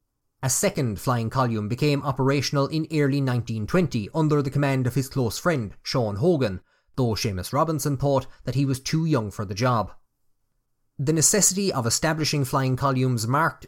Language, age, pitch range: English, 30-49, 115-150 Hz